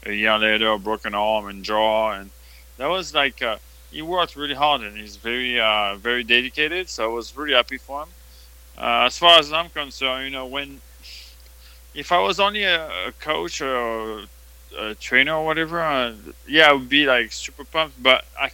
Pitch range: 105-135 Hz